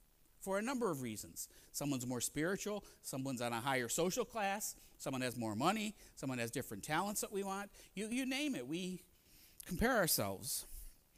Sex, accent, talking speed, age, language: male, American, 170 wpm, 50-69, English